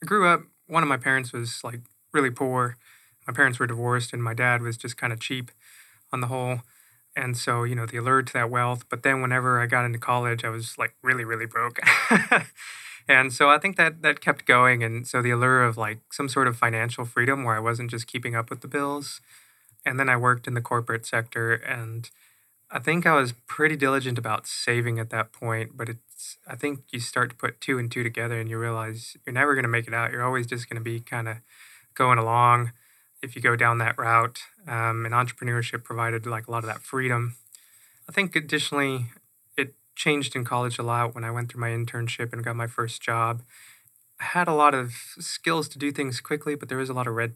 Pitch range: 115-135 Hz